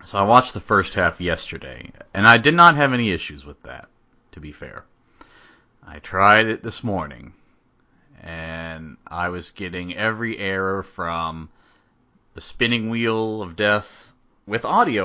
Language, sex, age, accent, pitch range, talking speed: English, male, 30-49, American, 85-115 Hz, 150 wpm